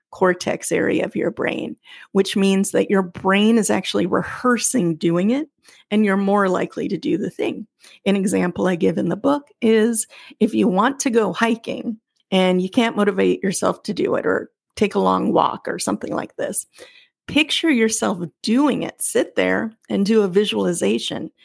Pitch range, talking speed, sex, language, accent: 190-245 Hz, 180 wpm, female, English, American